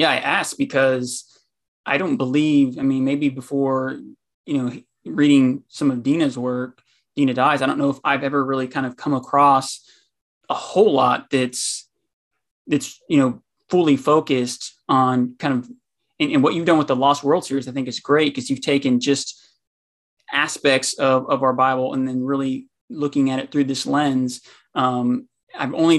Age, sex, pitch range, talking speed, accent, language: 20-39, male, 130-145 Hz, 180 wpm, American, English